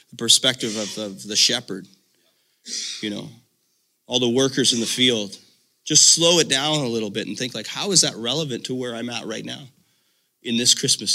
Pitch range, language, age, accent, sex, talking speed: 110-130 Hz, English, 30-49, American, male, 195 wpm